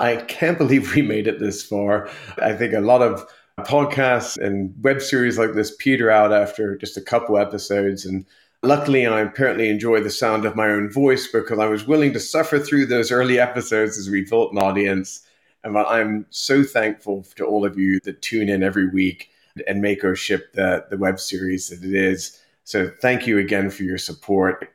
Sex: male